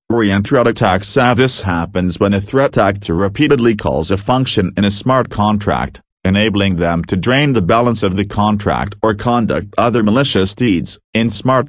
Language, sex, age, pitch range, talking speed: English, male, 40-59, 95-120 Hz, 170 wpm